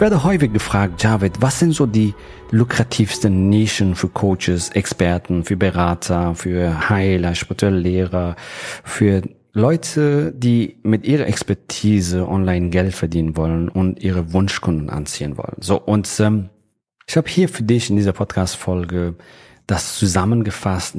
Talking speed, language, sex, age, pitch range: 135 wpm, German, male, 40-59, 90-110 Hz